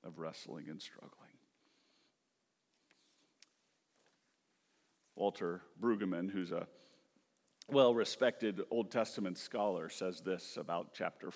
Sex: male